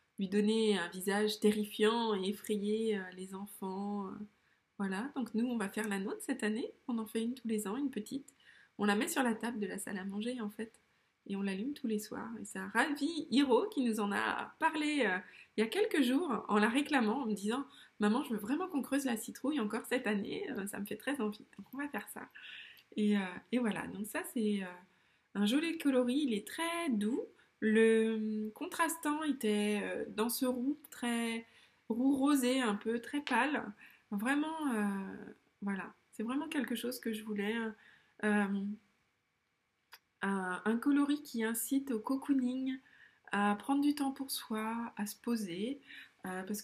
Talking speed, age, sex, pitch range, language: 190 wpm, 20-39, female, 210-275 Hz, French